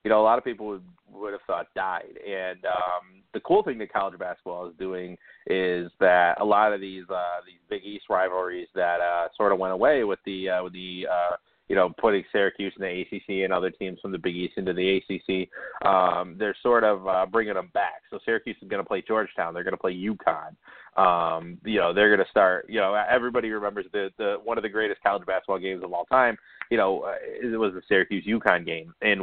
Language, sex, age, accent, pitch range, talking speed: English, male, 30-49, American, 90-100 Hz, 235 wpm